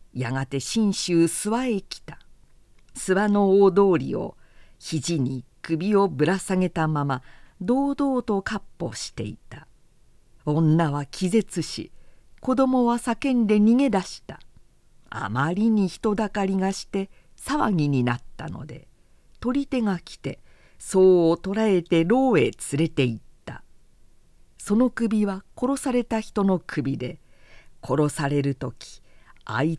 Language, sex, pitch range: Japanese, female, 145-210 Hz